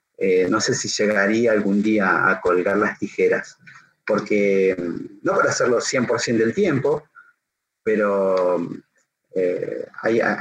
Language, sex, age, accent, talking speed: Spanish, male, 30-49, Argentinian, 120 wpm